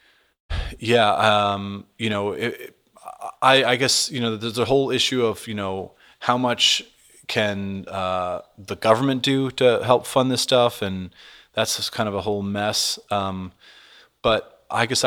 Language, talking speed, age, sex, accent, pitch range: English, 165 wpm, 30-49, male, American, 100-115 Hz